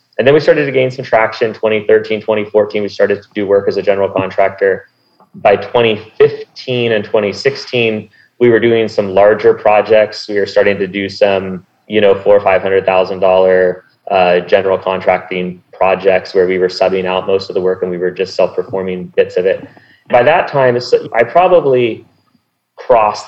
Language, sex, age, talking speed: English, male, 30-49, 185 wpm